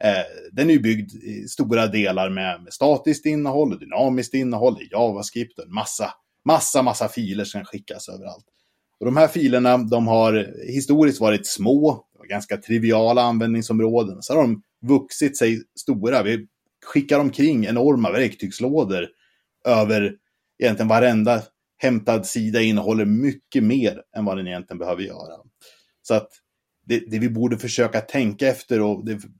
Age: 30-49